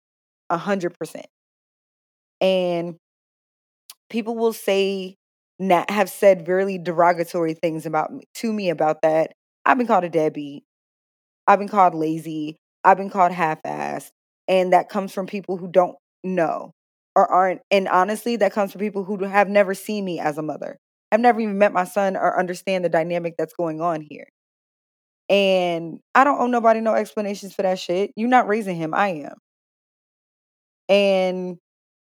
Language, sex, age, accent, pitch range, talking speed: English, female, 20-39, American, 170-200 Hz, 165 wpm